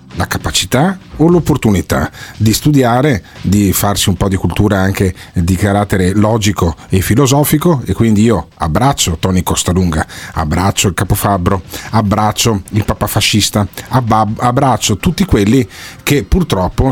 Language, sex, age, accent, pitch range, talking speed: Italian, male, 40-59, native, 95-135 Hz, 130 wpm